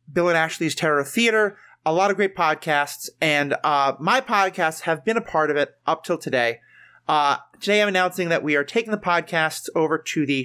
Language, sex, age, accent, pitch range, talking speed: English, male, 30-49, American, 145-180 Hz, 205 wpm